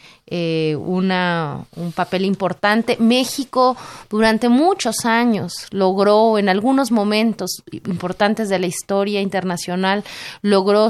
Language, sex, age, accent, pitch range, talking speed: Spanish, female, 30-49, Mexican, 175-205 Hz, 105 wpm